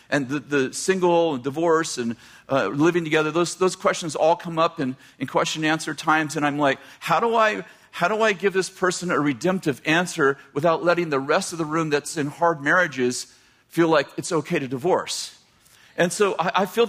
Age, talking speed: 40-59, 220 wpm